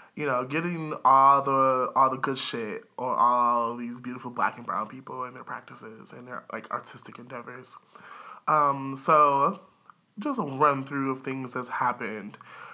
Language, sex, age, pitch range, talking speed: English, male, 20-39, 130-160 Hz, 165 wpm